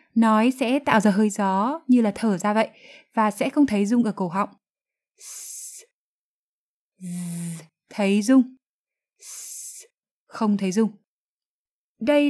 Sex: female